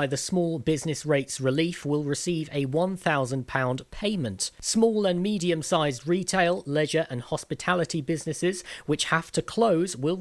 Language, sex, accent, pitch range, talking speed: English, male, British, 135-175 Hz, 140 wpm